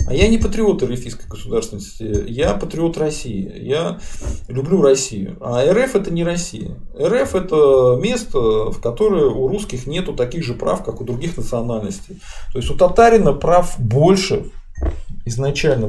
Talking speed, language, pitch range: 145 wpm, Russian, 110-180 Hz